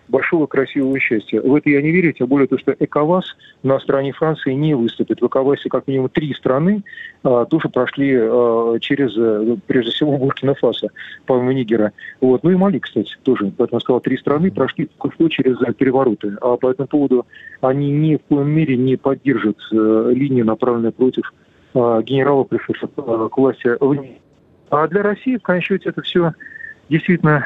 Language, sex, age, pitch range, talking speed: Russian, male, 40-59, 130-155 Hz, 175 wpm